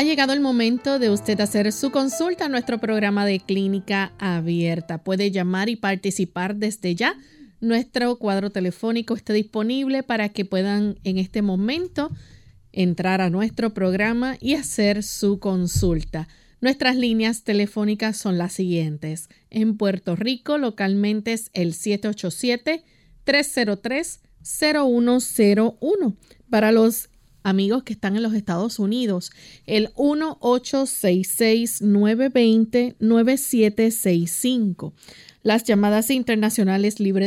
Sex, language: female, Spanish